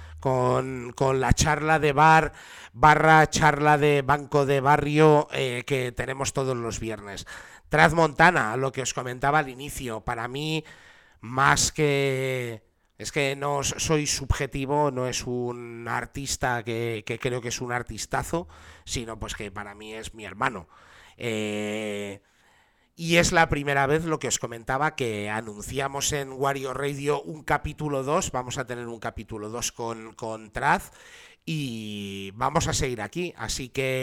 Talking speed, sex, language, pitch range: 155 wpm, male, Spanish, 115-145 Hz